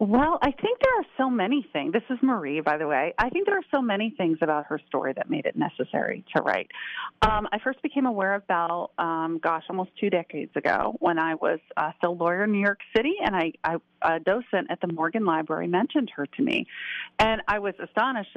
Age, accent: 40-59, American